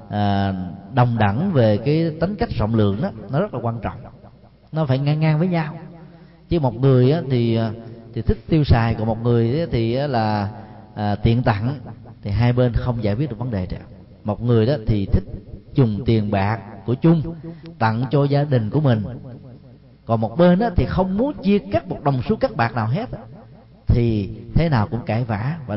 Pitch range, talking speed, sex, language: 110-145 Hz, 205 wpm, male, Vietnamese